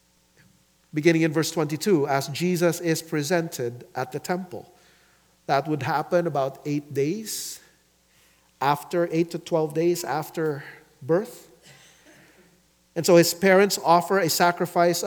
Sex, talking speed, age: male, 125 wpm, 50-69